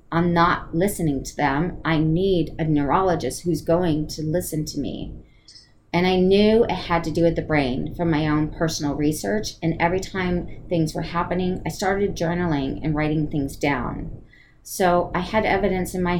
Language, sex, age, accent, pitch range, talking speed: English, female, 30-49, American, 145-175 Hz, 180 wpm